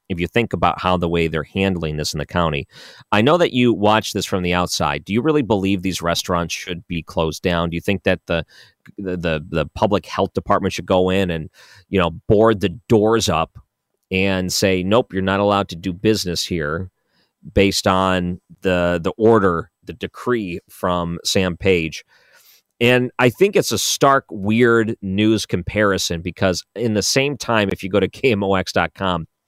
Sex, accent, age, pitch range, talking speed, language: male, American, 40-59, 90-110 Hz, 185 wpm, English